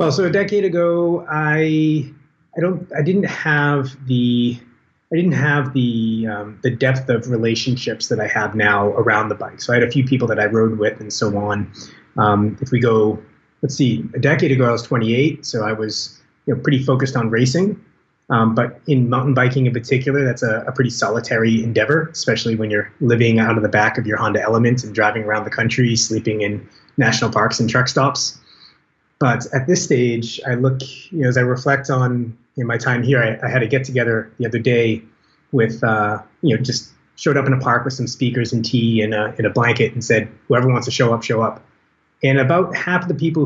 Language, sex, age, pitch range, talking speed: English, male, 30-49, 110-135 Hz, 220 wpm